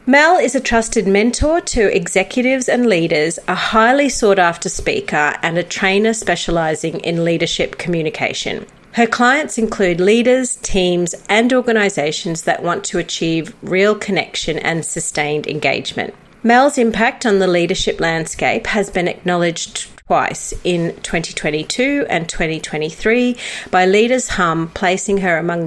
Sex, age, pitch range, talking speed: female, 40-59, 170-225 Hz, 135 wpm